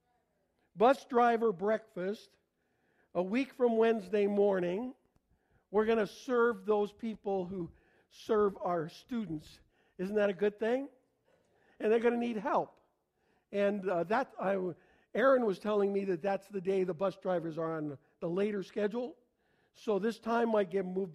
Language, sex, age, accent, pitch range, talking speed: English, male, 50-69, American, 155-220 Hz, 160 wpm